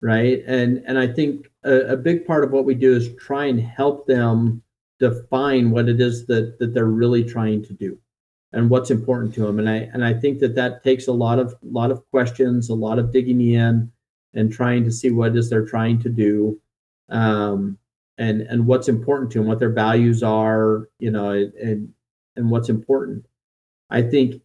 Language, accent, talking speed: English, American, 205 wpm